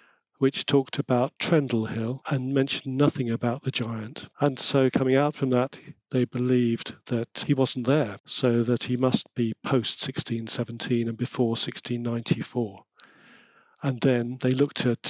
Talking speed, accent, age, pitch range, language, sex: 150 wpm, British, 50-69, 120-135 Hz, English, male